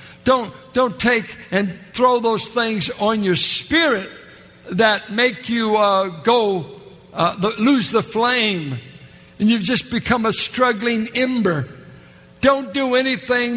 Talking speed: 130 wpm